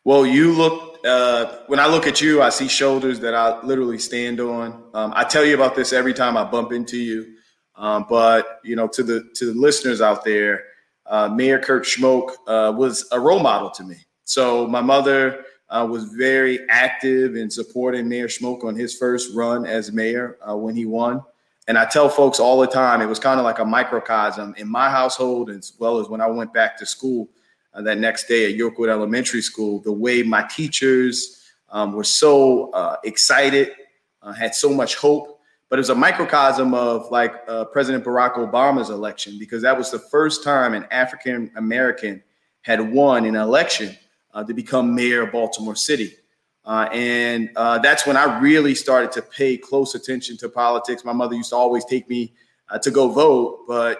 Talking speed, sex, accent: 195 wpm, male, American